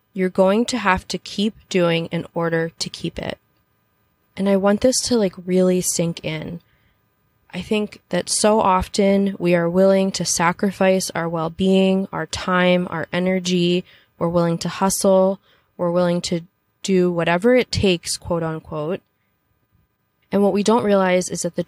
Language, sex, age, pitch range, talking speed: English, female, 20-39, 165-190 Hz, 160 wpm